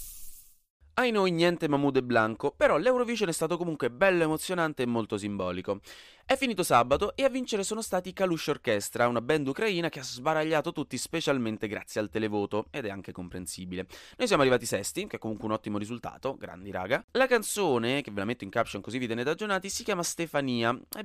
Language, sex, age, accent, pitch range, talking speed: Italian, male, 20-39, native, 105-155 Hz, 195 wpm